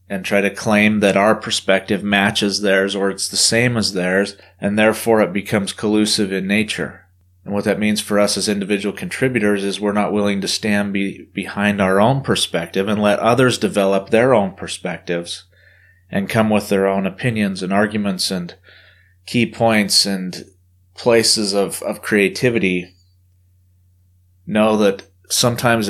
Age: 30-49